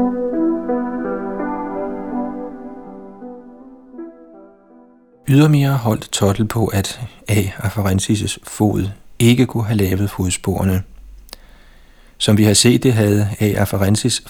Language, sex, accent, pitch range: Danish, male, native, 95-115 Hz